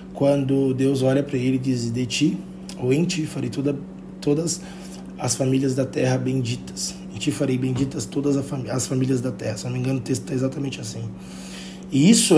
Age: 20-39